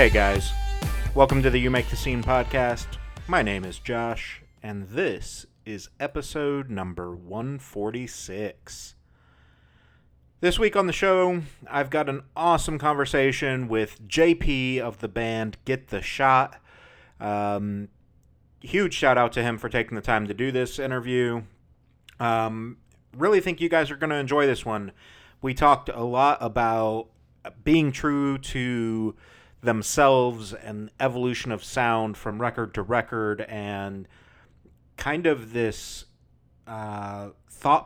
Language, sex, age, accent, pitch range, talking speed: English, male, 30-49, American, 105-135 Hz, 135 wpm